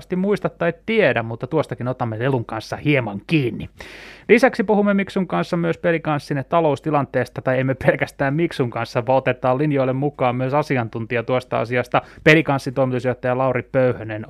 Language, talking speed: Finnish, 145 wpm